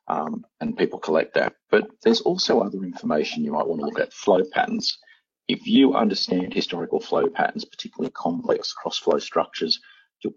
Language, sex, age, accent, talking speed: English, male, 40-59, Australian, 175 wpm